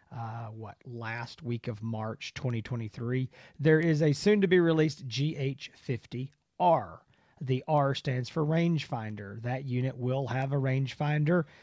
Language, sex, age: English, male, 40-59